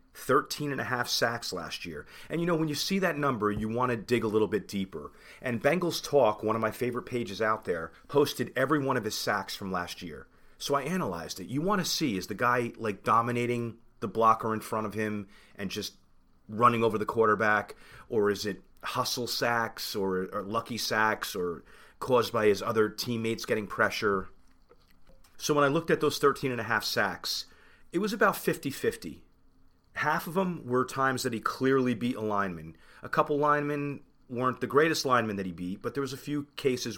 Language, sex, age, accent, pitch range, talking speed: English, male, 40-59, American, 105-130 Hz, 205 wpm